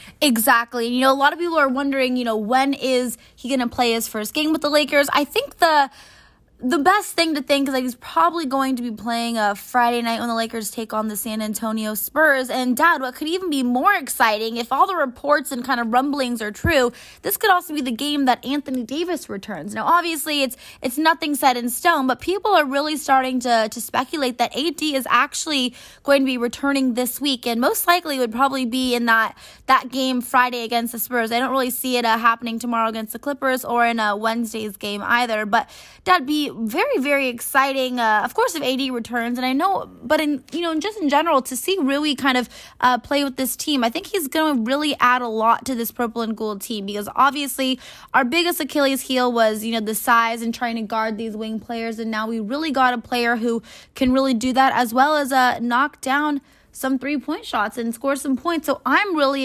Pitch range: 235-285 Hz